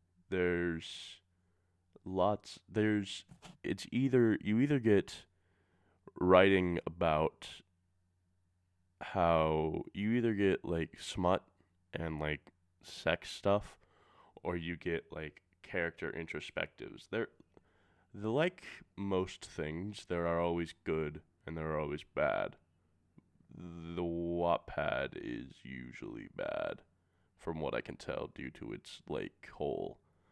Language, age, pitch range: English, 20-39, 85-100 Hz